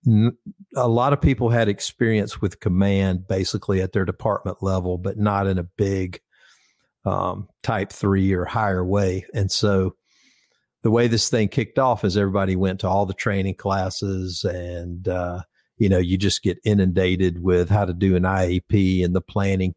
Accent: American